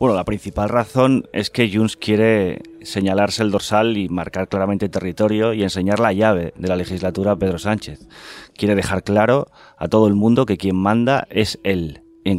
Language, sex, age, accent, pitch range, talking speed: Spanish, male, 30-49, Spanish, 85-110 Hz, 185 wpm